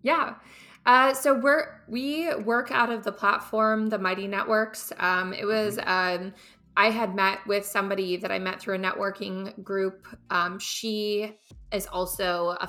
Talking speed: 160 wpm